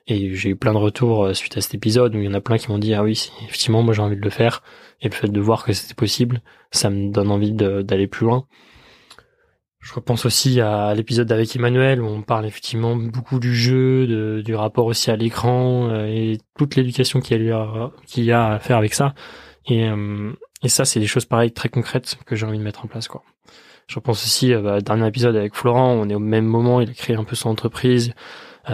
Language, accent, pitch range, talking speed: French, French, 110-125 Hz, 245 wpm